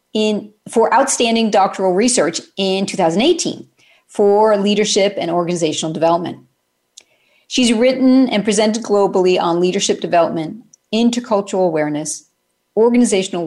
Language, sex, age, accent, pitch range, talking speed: English, female, 40-59, American, 190-245 Hz, 100 wpm